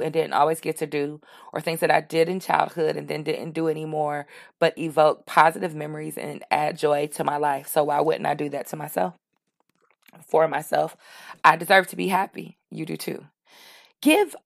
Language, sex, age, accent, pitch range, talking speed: English, female, 20-39, American, 150-175 Hz, 195 wpm